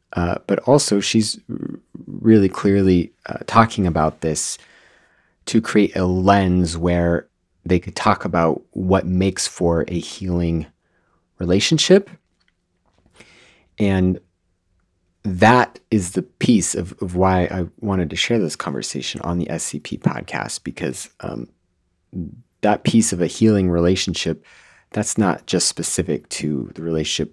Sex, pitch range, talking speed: male, 85-105 Hz, 125 wpm